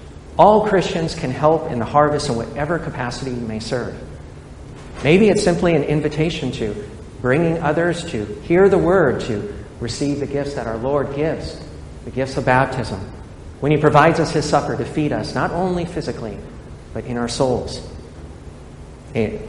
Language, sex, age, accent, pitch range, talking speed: English, male, 50-69, American, 100-145 Hz, 165 wpm